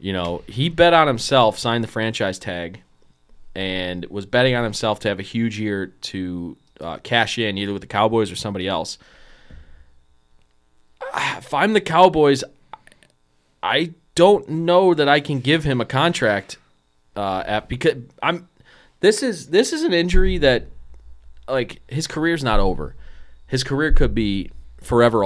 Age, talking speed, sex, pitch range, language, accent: 20-39, 155 wpm, male, 95-135 Hz, English, American